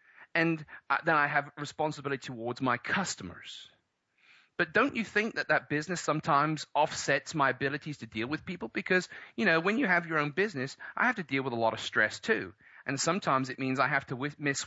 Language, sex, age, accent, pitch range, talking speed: English, male, 30-49, British, 125-165 Hz, 205 wpm